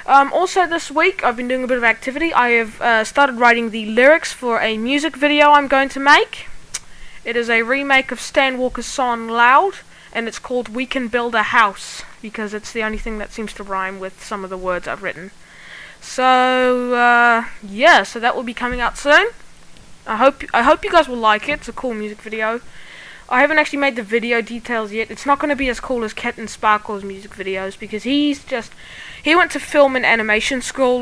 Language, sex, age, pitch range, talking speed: English, female, 20-39, 225-285 Hz, 220 wpm